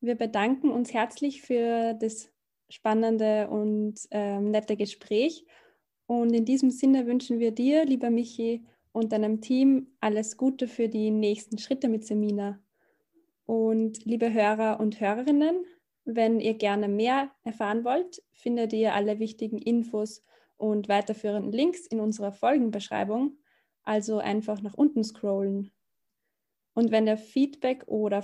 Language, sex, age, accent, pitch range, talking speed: German, female, 20-39, German, 210-250 Hz, 135 wpm